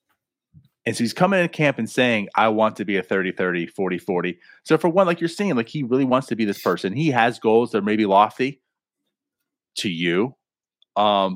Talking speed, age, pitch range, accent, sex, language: 205 wpm, 30-49, 105-145 Hz, American, male, English